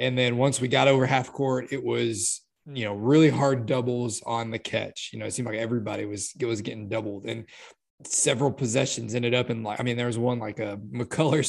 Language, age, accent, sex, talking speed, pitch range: English, 20-39, American, male, 230 wpm, 115-135 Hz